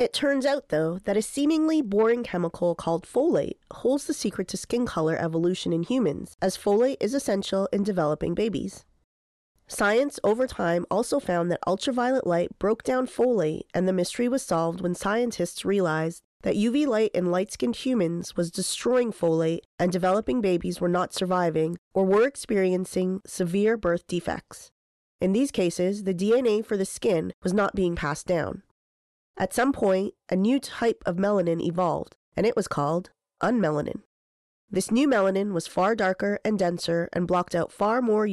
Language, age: English, 30-49